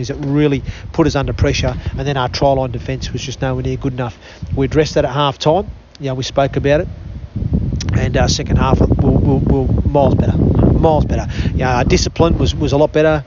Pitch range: 130-150 Hz